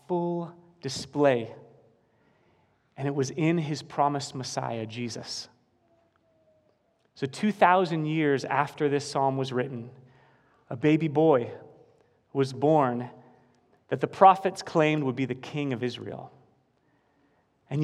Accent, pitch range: American, 135-170 Hz